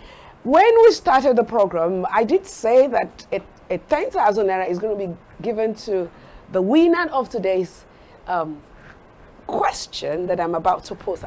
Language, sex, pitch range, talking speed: English, female, 195-315 Hz, 160 wpm